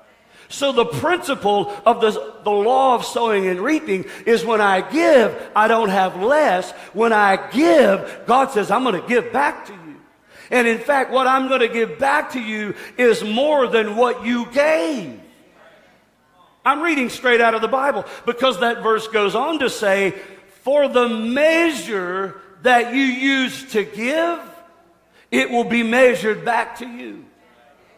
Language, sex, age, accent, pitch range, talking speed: English, male, 50-69, American, 220-280 Hz, 165 wpm